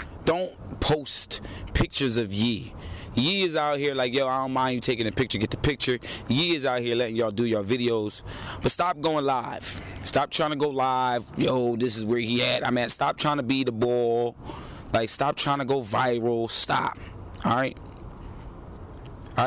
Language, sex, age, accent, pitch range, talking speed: English, male, 30-49, American, 105-140 Hz, 195 wpm